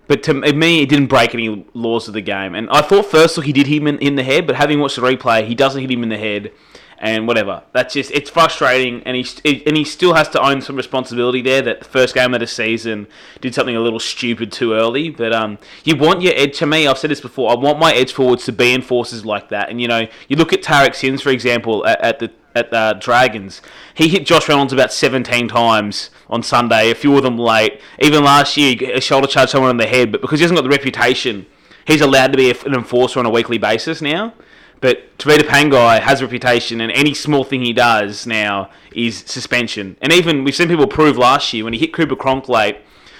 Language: English